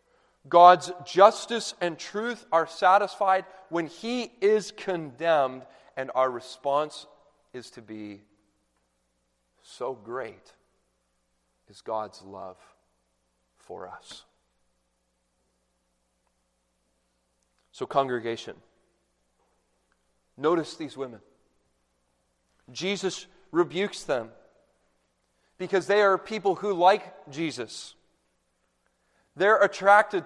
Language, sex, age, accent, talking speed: English, male, 40-59, American, 80 wpm